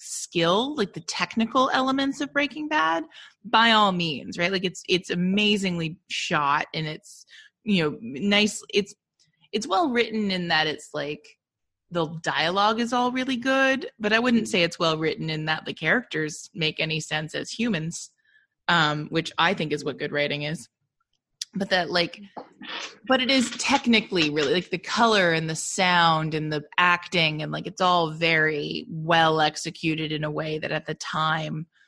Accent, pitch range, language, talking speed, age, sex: American, 155-205 Hz, English, 175 wpm, 20-39, female